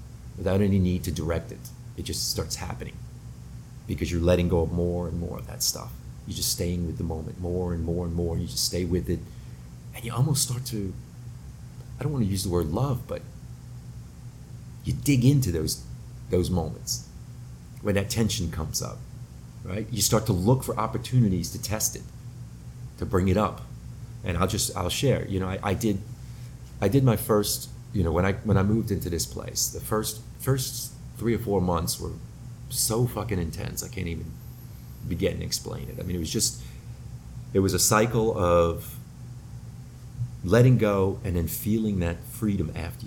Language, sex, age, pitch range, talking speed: English, male, 40-59, 85-120 Hz, 190 wpm